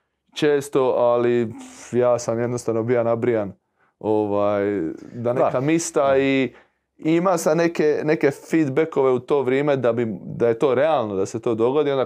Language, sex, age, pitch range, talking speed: Croatian, male, 20-39, 110-130 Hz, 160 wpm